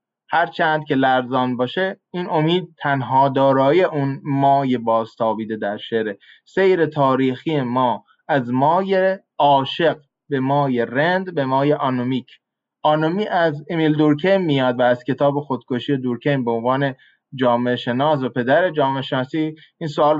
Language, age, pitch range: Persian, 20-39, 130-165 Hz